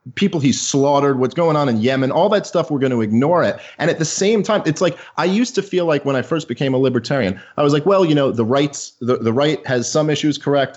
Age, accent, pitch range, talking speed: 30-49, American, 135-190 Hz, 275 wpm